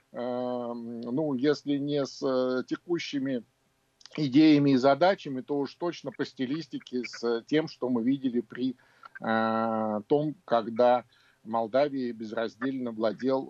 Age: 50-69